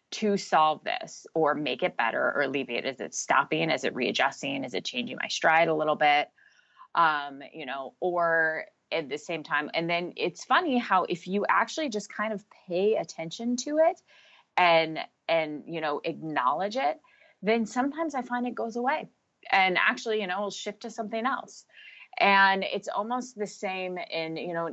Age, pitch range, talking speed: 20-39, 160-230 Hz, 180 wpm